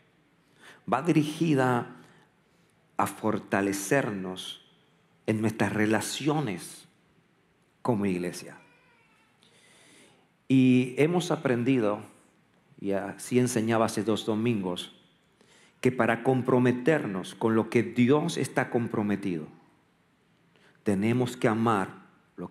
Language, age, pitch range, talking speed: Spanish, 50-69, 105-155 Hz, 85 wpm